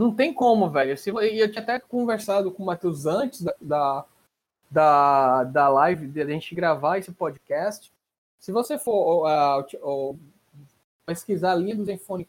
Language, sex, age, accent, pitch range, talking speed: Portuguese, male, 20-39, Brazilian, 165-220 Hz, 165 wpm